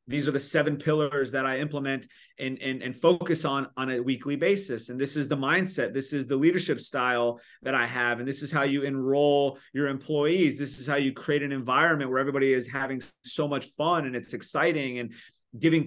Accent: American